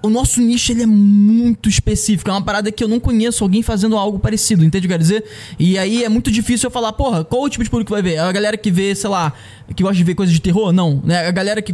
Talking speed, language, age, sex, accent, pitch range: 300 wpm, Portuguese, 20-39, male, Brazilian, 170-225 Hz